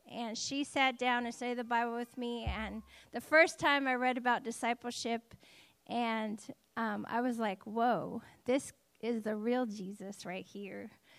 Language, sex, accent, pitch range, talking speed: English, female, American, 230-270 Hz, 165 wpm